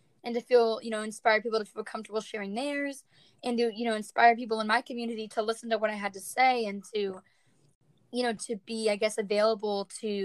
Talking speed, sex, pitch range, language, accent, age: 230 wpm, female, 200-235 Hz, English, American, 10-29